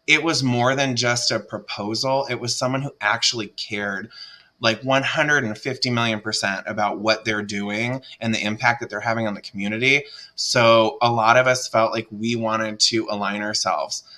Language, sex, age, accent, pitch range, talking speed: English, male, 20-39, American, 105-125 Hz, 180 wpm